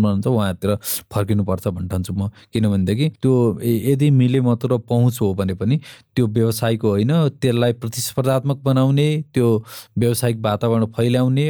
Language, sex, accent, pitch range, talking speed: English, male, Indian, 110-130 Hz, 140 wpm